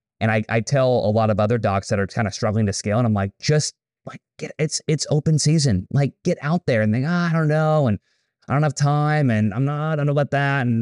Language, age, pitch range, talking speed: English, 20-39, 100-135 Hz, 285 wpm